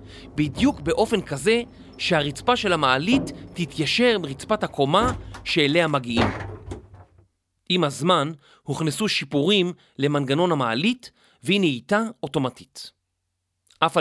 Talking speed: 90 wpm